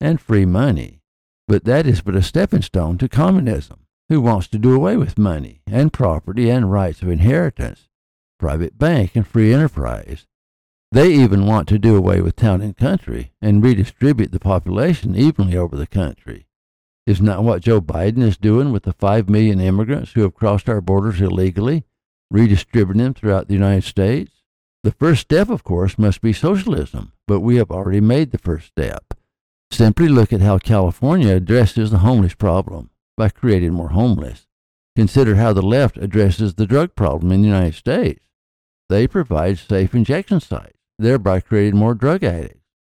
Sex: male